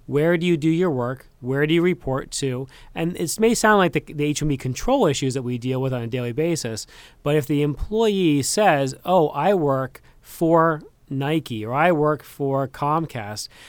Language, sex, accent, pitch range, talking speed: English, male, American, 135-160 Hz, 190 wpm